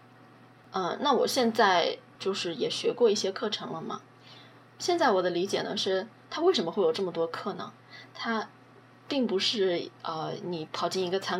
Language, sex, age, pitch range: Chinese, female, 20-39, 170-225 Hz